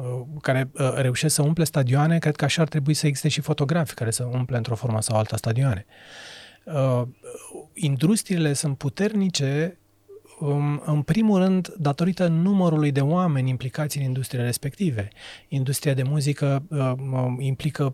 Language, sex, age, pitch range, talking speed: Romanian, male, 30-49, 125-160 Hz, 135 wpm